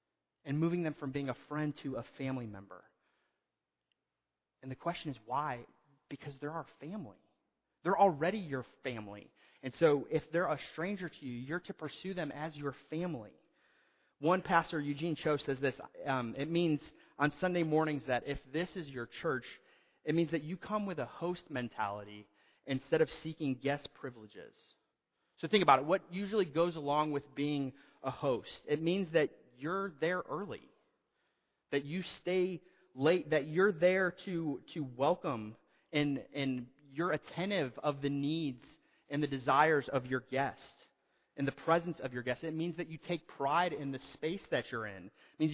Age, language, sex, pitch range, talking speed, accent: 30-49, English, male, 135-170 Hz, 175 wpm, American